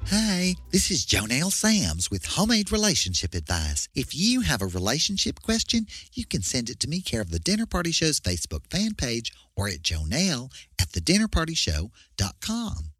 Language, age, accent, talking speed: English, 40-59, American, 165 wpm